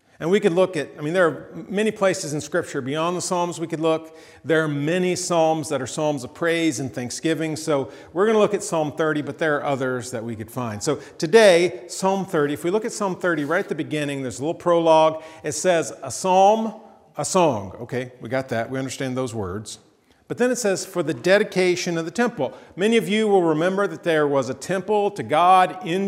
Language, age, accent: English, 40-59, American